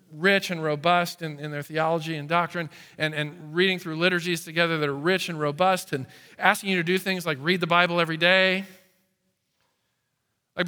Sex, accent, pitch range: male, American, 155-195 Hz